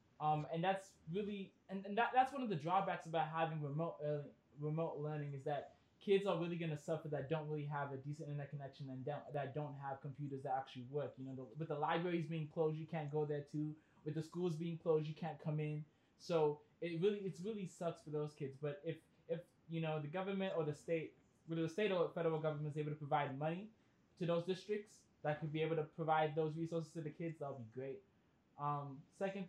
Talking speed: 235 wpm